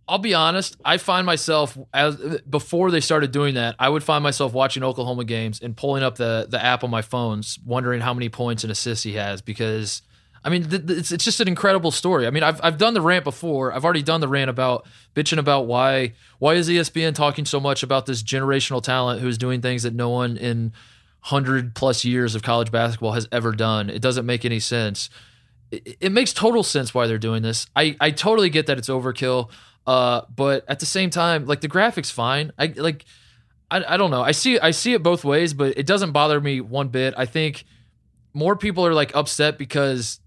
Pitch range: 120-155 Hz